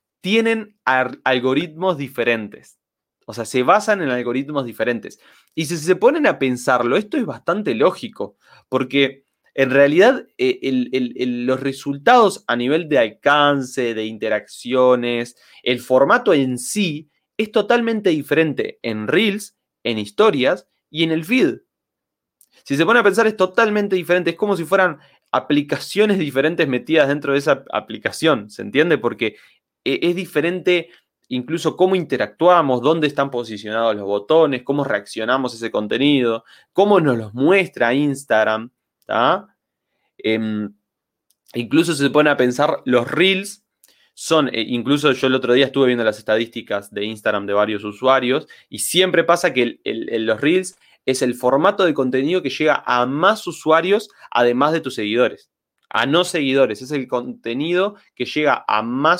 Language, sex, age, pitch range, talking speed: Spanish, male, 30-49, 125-175 Hz, 145 wpm